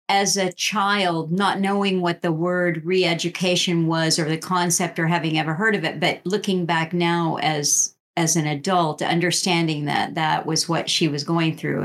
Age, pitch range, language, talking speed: 50-69, 165-190 Hz, English, 180 wpm